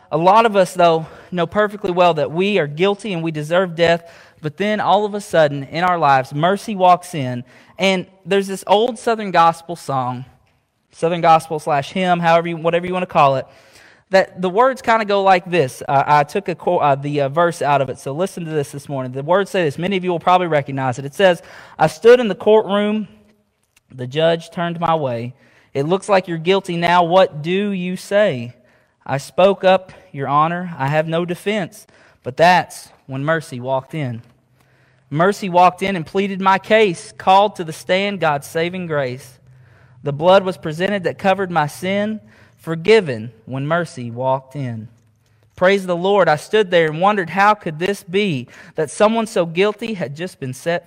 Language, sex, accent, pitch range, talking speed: English, male, American, 135-190 Hz, 195 wpm